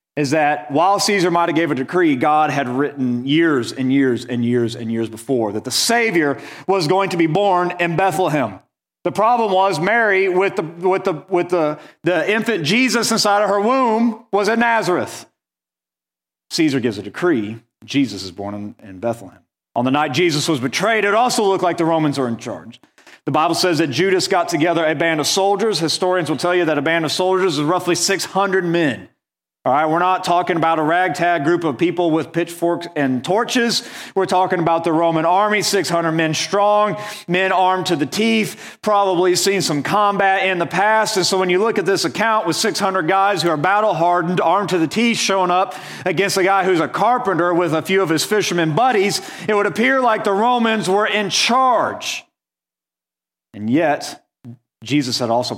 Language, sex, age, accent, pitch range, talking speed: English, male, 40-59, American, 145-195 Hz, 195 wpm